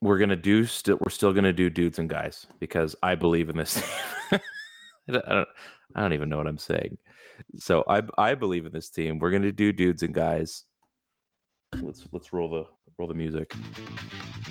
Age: 30-49